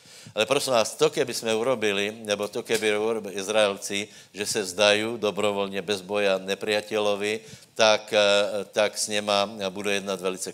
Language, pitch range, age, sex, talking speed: Slovak, 100-115 Hz, 60-79, male, 155 wpm